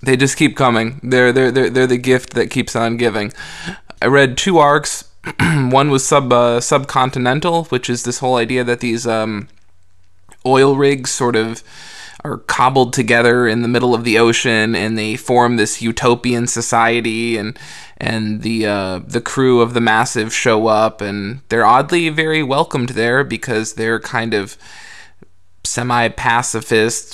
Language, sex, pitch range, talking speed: English, male, 110-125 Hz, 160 wpm